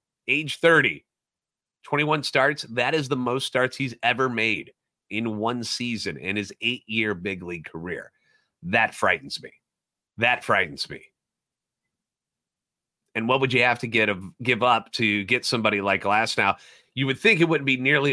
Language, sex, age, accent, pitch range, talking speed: English, male, 30-49, American, 105-135 Hz, 165 wpm